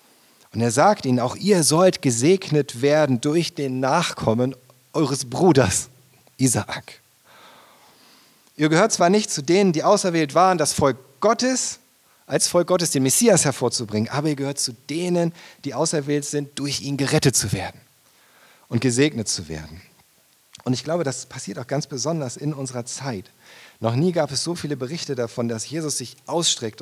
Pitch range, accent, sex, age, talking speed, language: 110-150 Hz, German, male, 40-59, 165 wpm, German